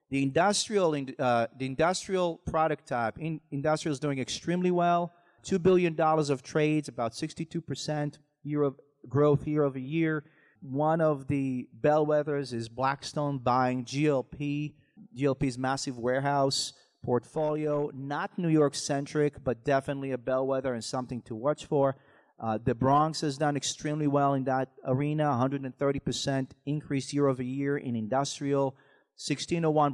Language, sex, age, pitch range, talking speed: English, male, 40-59, 130-155 Hz, 140 wpm